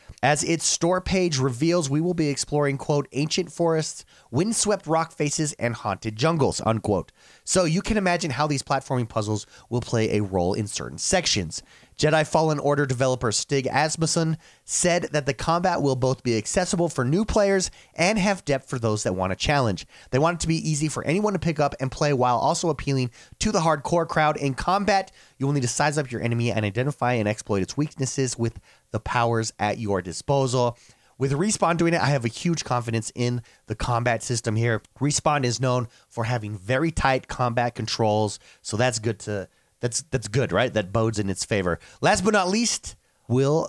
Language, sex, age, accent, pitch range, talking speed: English, male, 30-49, American, 115-155 Hz, 195 wpm